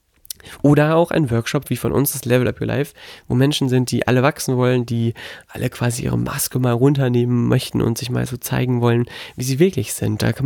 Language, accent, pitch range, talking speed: German, German, 120-140 Hz, 225 wpm